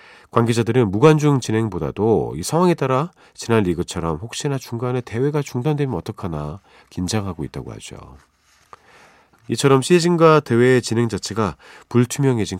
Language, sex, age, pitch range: Korean, male, 40-59, 90-130 Hz